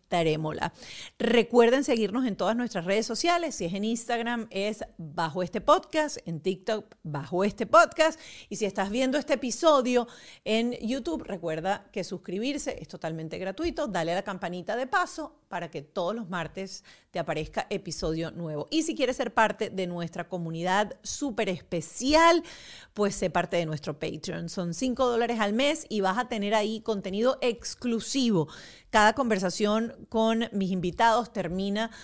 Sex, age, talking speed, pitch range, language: female, 40-59, 155 wpm, 175-240 Hz, Spanish